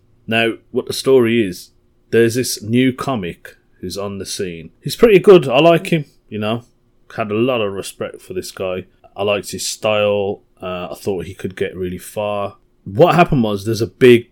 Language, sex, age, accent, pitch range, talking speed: English, male, 30-49, British, 95-120 Hz, 195 wpm